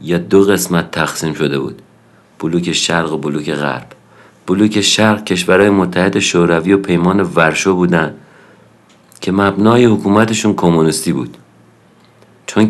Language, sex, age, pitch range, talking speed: Persian, male, 50-69, 85-105 Hz, 125 wpm